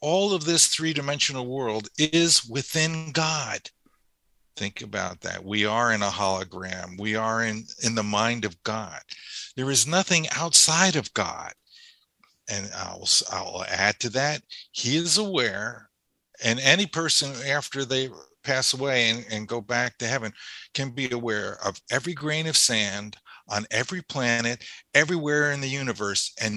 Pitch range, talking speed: 115-155 Hz, 155 wpm